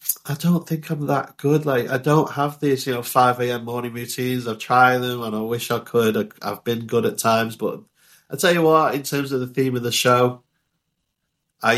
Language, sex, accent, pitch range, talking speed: English, male, British, 110-130 Hz, 220 wpm